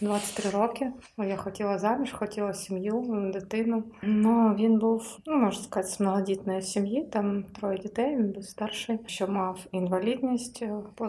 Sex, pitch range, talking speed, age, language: female, 185-215 Hz, 145 wpm, 20-39, Ukrainian